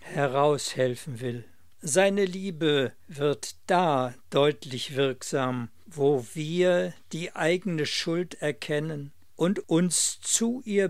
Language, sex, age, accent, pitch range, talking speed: German, male, 60-79, German, 135-165 Hz, 100 wpm